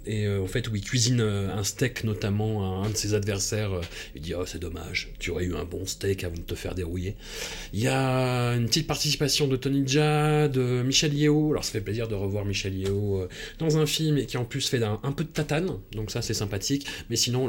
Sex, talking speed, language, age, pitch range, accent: male, 260 wpm, French, 30-49, 105-140 Hz, French